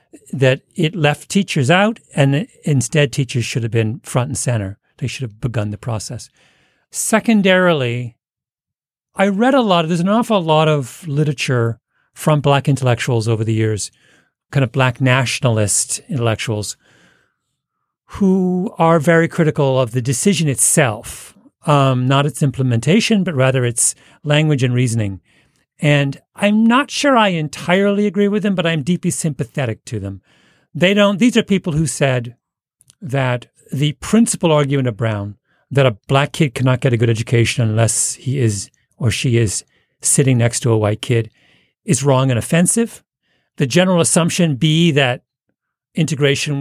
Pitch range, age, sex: 125-170 Hz, 40-59, male